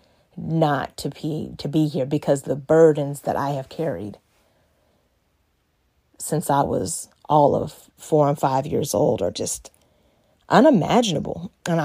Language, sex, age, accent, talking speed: English, female, 30-49, American, 135 wpm